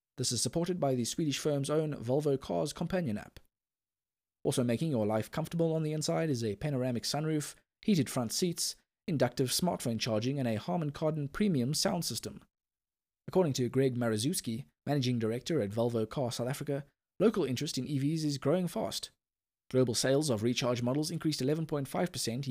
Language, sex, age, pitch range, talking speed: English, male, 20-39, 125-160 Hz, 165 wpm